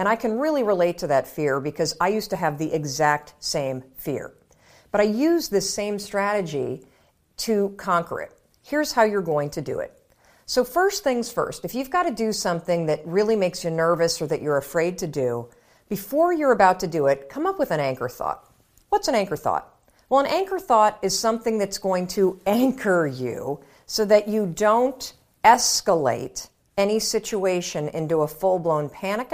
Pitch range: 165-230 Hz